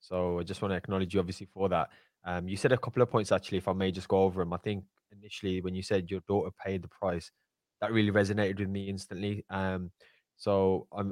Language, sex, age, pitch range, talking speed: English, male, 20-39, 90-100 Hz, 245 wpm